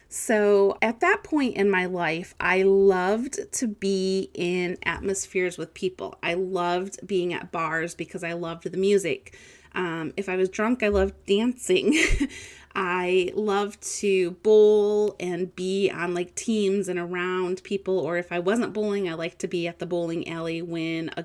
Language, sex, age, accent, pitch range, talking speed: English, female, 30-49, American, 175-215 Hz, 170 wpm